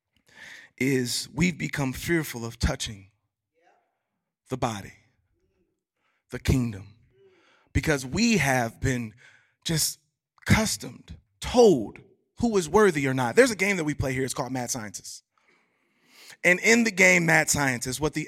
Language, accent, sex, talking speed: English, American, male, 135 wpm